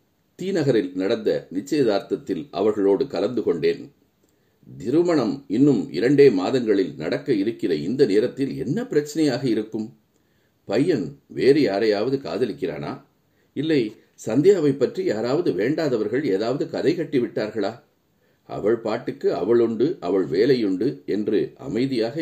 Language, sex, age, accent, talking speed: Tamil, male, 50-69, native, 95 wpm